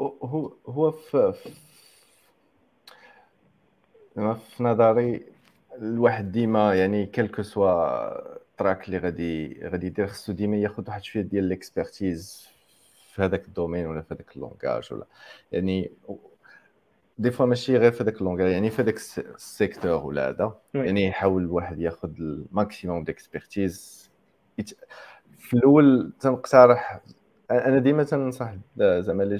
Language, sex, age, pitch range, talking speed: Arabic, male, 40-59, 95-120 Hz, 115 wpm